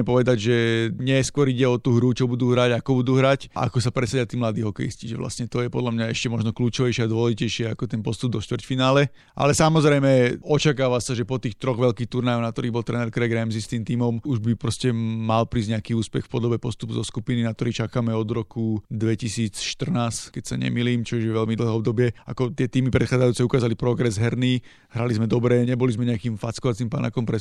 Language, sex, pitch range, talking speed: Slovak, male, 115-130 Hz, 210 wpm